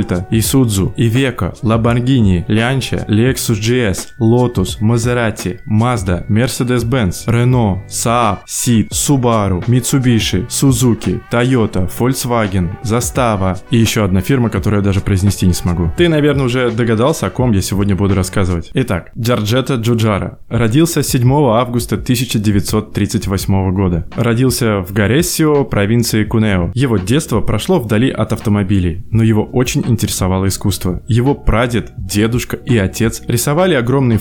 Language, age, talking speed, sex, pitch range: Russian, 20-39, 125 wpm, male, 105-125 Hz